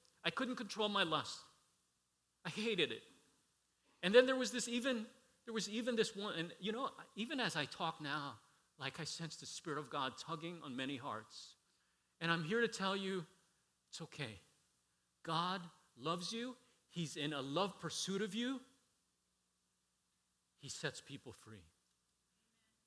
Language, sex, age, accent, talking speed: English, male, 40-59, American, 155 wpm